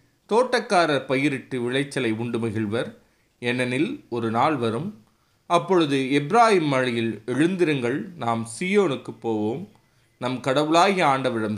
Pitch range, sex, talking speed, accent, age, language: 110-145 Hz, male, 100 wpm, native, 30-49, Tamil